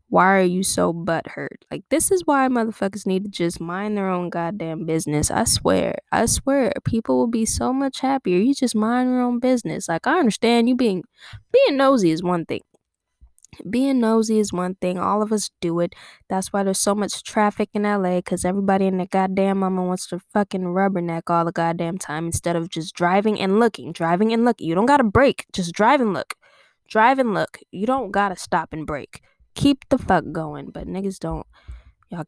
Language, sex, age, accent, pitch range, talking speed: English, female, 10-29, American, 155-215 Hz, 210 wpm